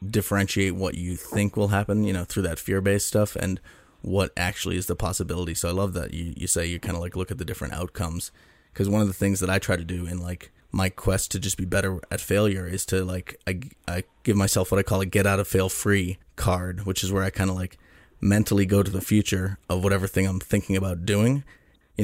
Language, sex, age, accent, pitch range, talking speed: English, male, 20-39, American, 95-100 Hz, 250 wpm